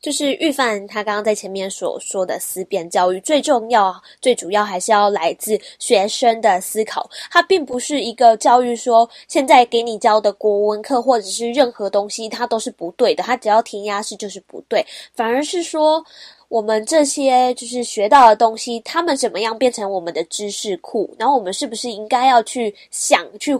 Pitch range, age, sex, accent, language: 200-260 Hz, 20-39, female, American, Chinese